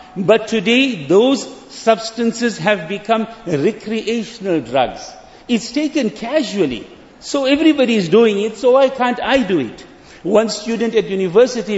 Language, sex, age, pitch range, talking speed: English, male, 50-69, 200-255 Hz, 130 wpm